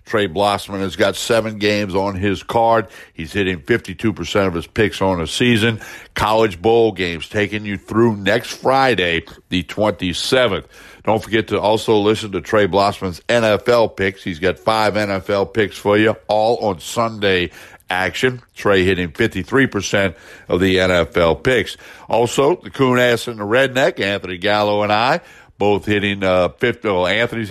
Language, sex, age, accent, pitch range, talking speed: English, male, 60-79, American, 100-120 Hz, 160 wpm